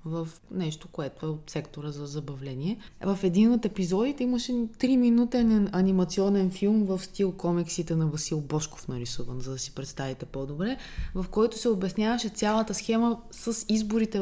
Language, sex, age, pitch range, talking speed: Bulgarian, female, 20-39, 160-195 Hz, 150 wpm